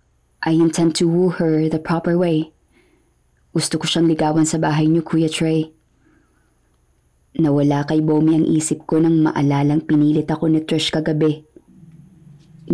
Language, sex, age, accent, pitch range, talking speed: Filipino, female, 20-39, native, 150-160 Hz, 140 wpm